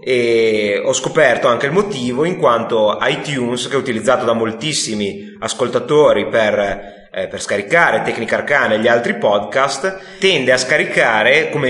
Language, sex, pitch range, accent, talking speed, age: Italian, male, 115-155 Hz, native, 140 wpm, 30-49